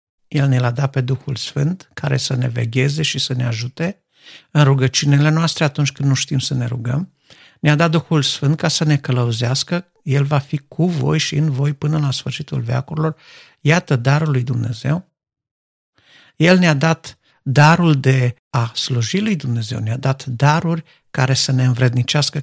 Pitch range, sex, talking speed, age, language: 125-150 Hz, male, 170 wpm, 50-69, Romanian